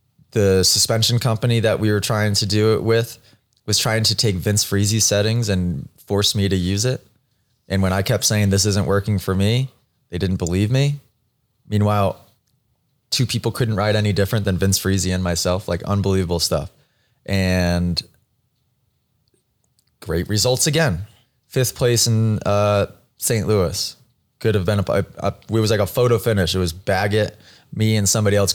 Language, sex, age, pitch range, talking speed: English, male, 20-39, 95-115 Hz, 170 wpm